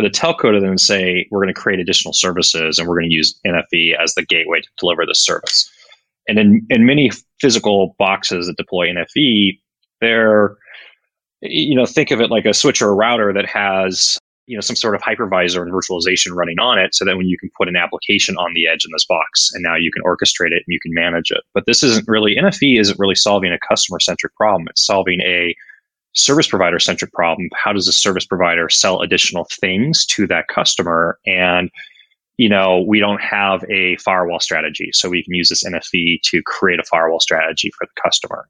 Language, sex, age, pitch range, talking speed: English, male, 20-39, 90-105 Hz, 210 wpm